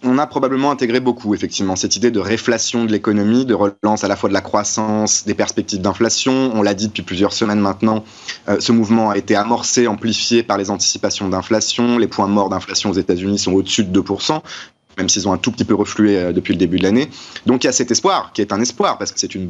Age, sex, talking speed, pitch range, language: 30-49, male, 245 wpm, 100-125 Hz, French